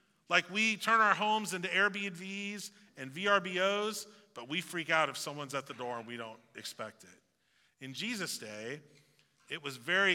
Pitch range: 140-205 Hz